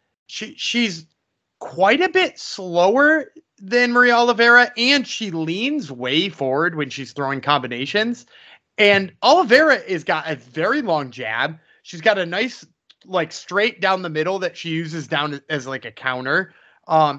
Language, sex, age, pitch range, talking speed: English, male, 30-49, 155-215 Hz, 155 wpm